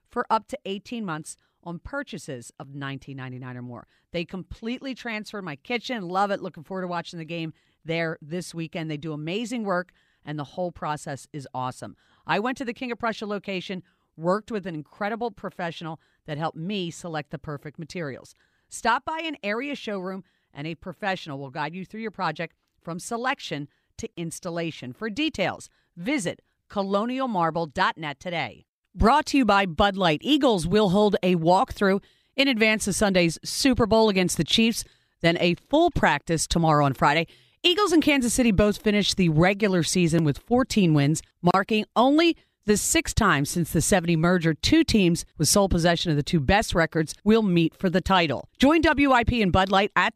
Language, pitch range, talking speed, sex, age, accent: English, 165-225 Hz, 180 wpm, female, 40-59, American